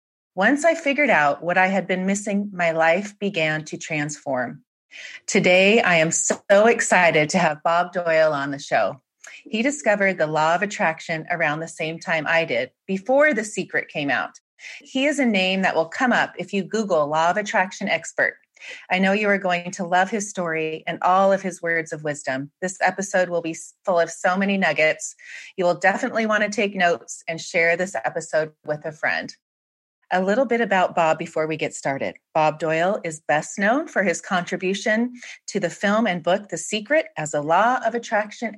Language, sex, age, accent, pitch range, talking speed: English, female, 30-49, American, 165-210 Hz, 195 wpm